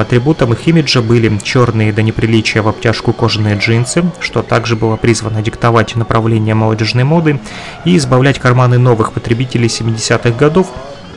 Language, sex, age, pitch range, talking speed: Russian, male, 30-49, 110-135 Hz, 140 wpm